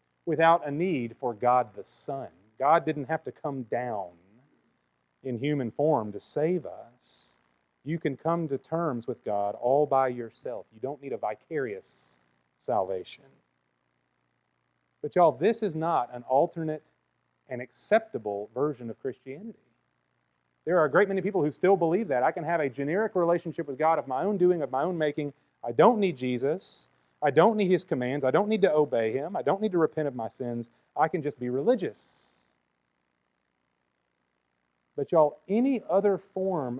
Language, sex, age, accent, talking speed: English, male, 40-59, American, 175 wpm